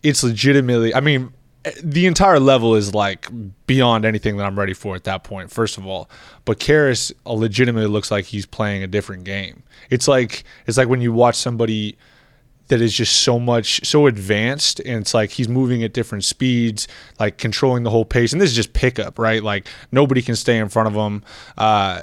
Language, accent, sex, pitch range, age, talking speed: English, American, male, 105-130 Hz, 20-39, 200 wpm